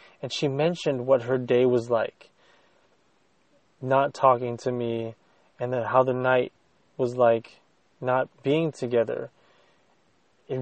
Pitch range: 120-140 Hz